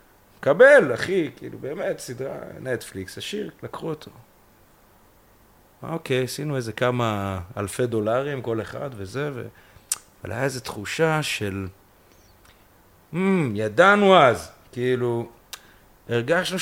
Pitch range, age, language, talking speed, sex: 115-170 Hz, 30-49, Hebrew, 110 wpm, male